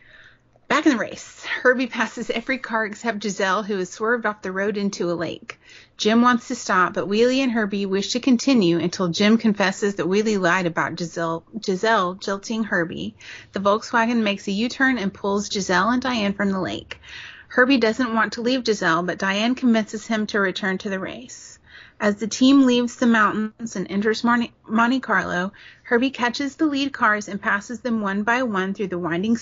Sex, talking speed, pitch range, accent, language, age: female, 190 wpm, 195-235 Hz, American, English, 30-49